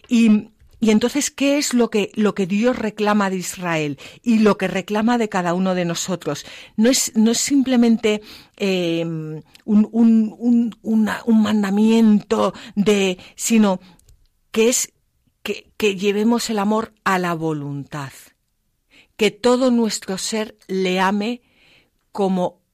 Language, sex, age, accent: Spanish, female, 50-69, Spanish